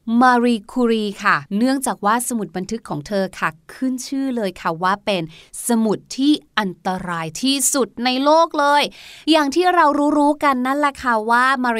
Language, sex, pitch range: Thai, female, 230-290 Hz